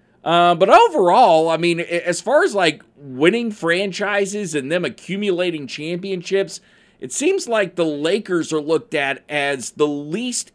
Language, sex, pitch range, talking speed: English, male, 130-185 Hz, 150 wpm